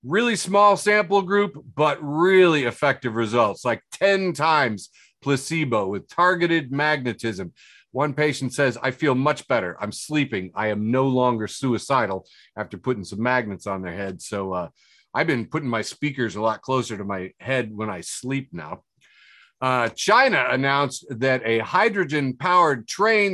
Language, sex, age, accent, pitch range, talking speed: English, male, 40-59, American, 115-175 Hz, 155 wpm